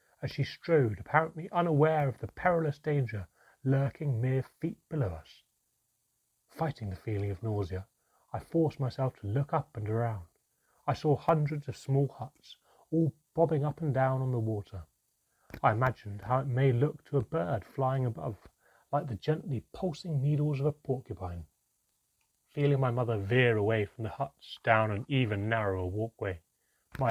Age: 30-49